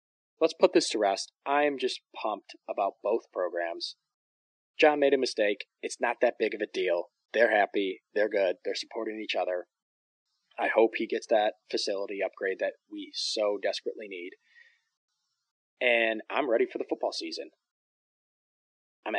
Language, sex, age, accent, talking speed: English, male, 20-39, American, 160 wpm